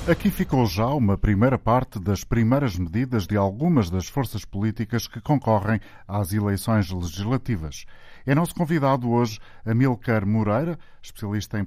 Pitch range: 100-125 Hz